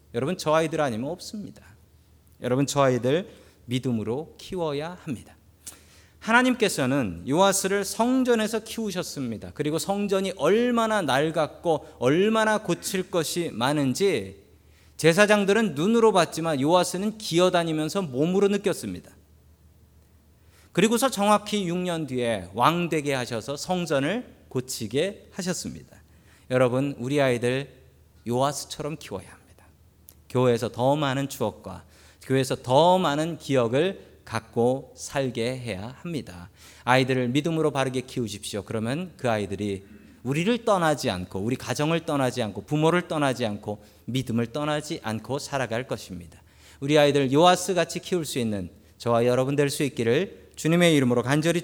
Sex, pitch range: male, 110-170 Hz